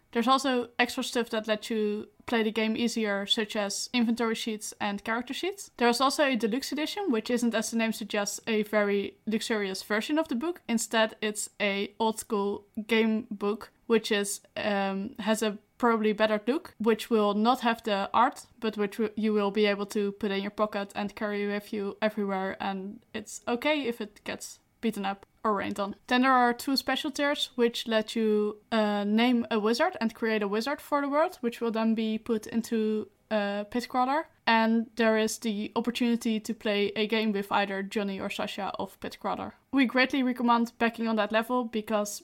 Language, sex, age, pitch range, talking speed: English, female, 10-29, 210-235 Hz, 195 wpm